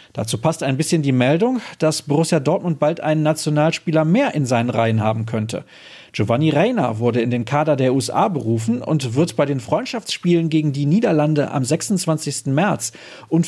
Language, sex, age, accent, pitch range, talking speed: German, male, 40-59, German, 120-160 Hz, 175 wpm